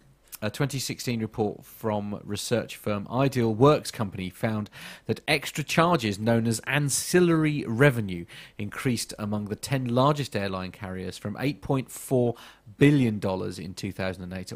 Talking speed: 120 wpm